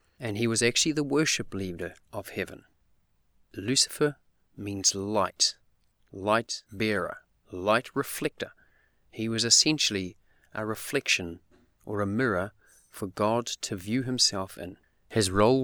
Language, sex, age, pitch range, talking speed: English, male, 30-49, 100-135 Hz, 125 wpm